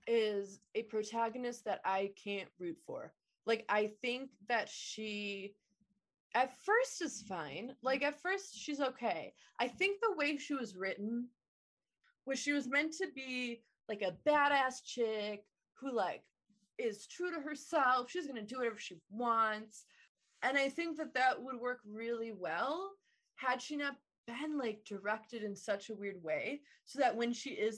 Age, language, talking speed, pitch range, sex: 20-39, English, 165 wpm, 210-290 Hz, female